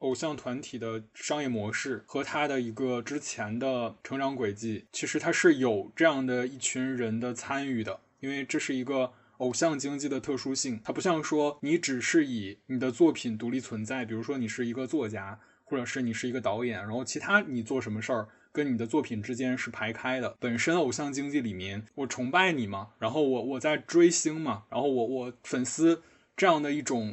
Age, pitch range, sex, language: 20-39, 115-145 Hz, male, Chinese